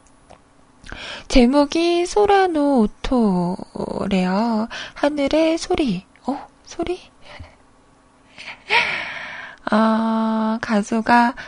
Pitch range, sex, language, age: 210-295 Hz, female, Korean, 20-39